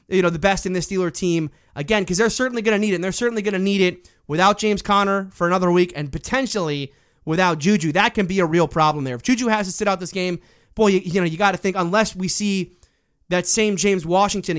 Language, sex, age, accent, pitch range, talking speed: English, male, 20-39, American, 170-215 Hz, 260 wpm